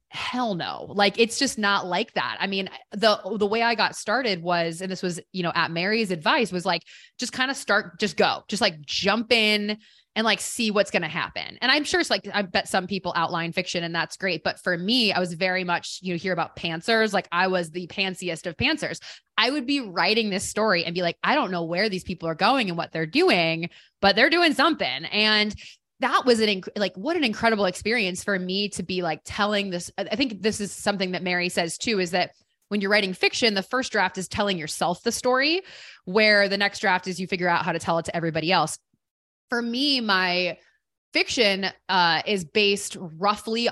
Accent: American